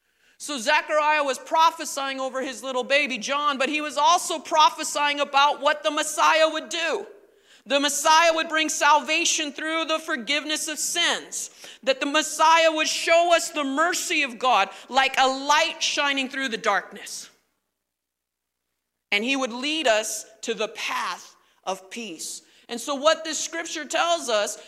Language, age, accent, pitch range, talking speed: English, 40-59, American, 240-310 Hz, 155 wpm